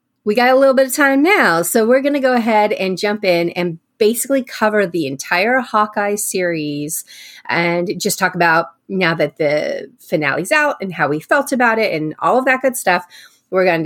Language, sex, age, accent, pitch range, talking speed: English, female, 30-49, American, 175-255 Hz, 205 wpm